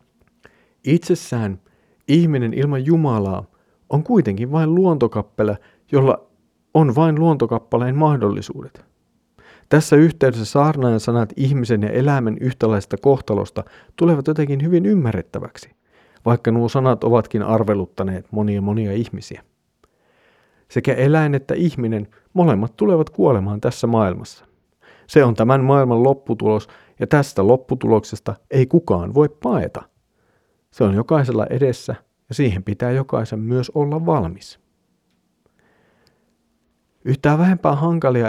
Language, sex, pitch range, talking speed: Finnish, male, 105-140 Hz, 110 wpm